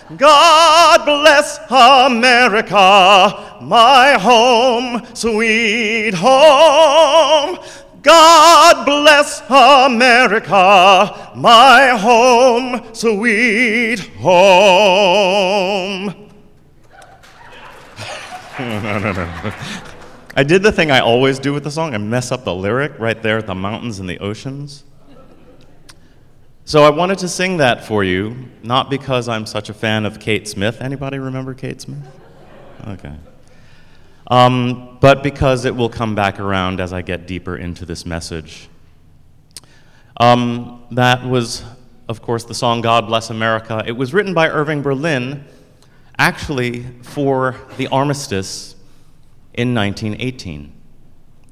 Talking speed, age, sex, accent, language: 110 wpm, 40-59, male, American, English